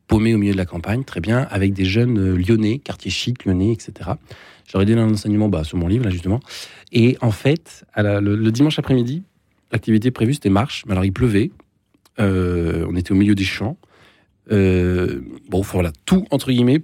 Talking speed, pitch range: 195 wpm, 95-115 Hz